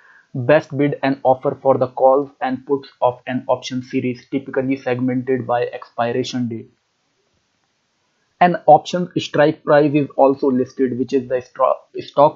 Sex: male